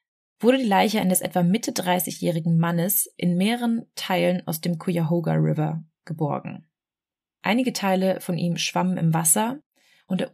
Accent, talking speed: German, 140 wpm